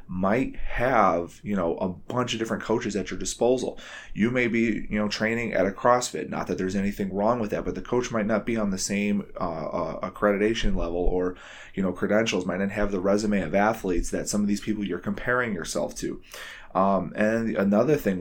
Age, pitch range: 30-49, 95-110 Hz